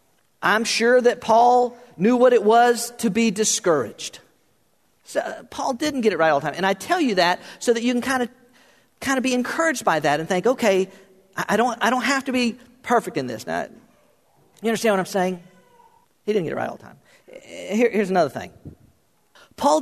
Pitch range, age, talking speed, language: 215-290 Hz, 50-69, 195 wpm, English